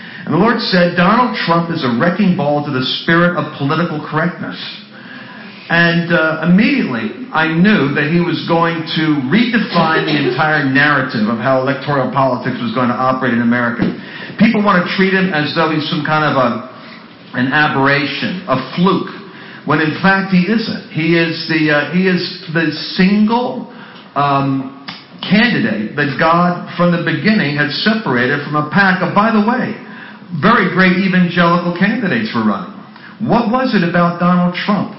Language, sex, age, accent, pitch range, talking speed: English, male, 50-69, American, 145-195 Hz, 165 wpm